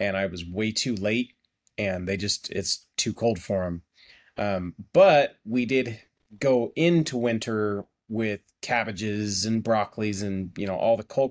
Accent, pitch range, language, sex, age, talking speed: American, 105-130 Hz, English, male, 30-49, 165 wpm